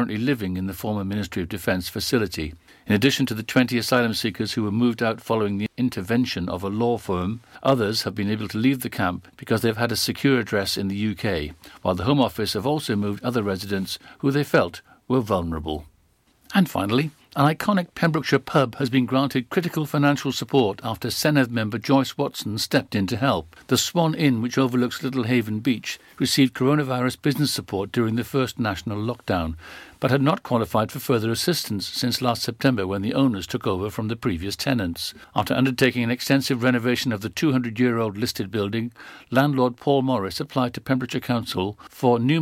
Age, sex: 60-79, male